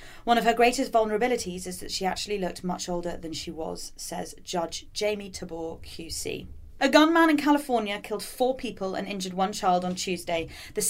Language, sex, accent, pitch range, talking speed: English, female, British, 175-240 Hz, 185 wpm